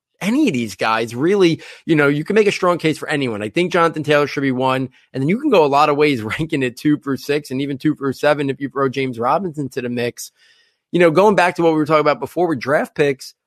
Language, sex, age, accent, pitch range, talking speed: English, male, 20-39, American, 130-160 Hz, 280 wpm